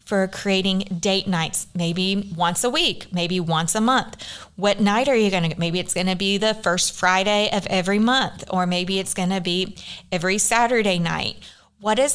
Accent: American